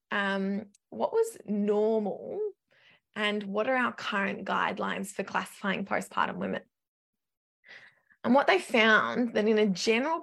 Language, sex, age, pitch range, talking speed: English, female, 20-39, 205-270 Hz, 130 wpm